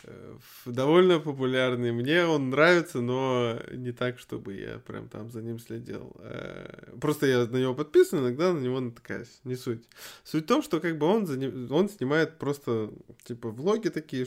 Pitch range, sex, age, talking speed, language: 120-150 Hz, male, 20-39, 170 wpm, Russian